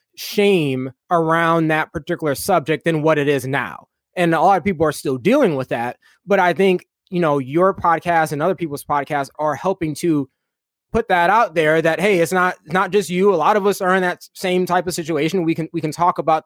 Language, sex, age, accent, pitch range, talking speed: English, male, 20-39, American, 145-180 Hz, 225 wpm